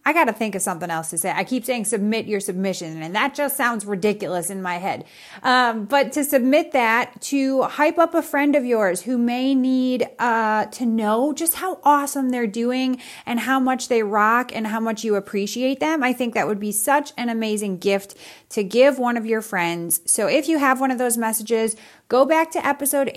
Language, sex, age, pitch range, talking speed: English, female, 30-49, 205-260 Hz, 215 wpm